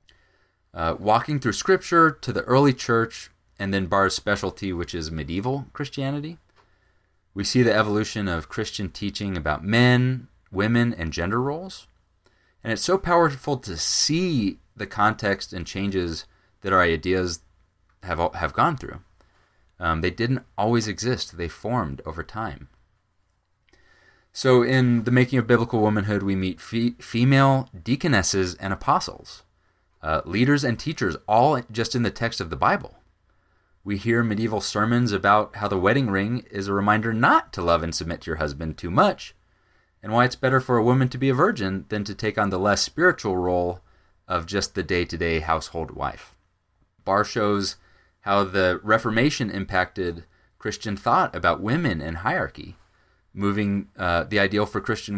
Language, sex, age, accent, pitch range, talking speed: English, male, 30-49, American, 90-120 Hz, 160 wpm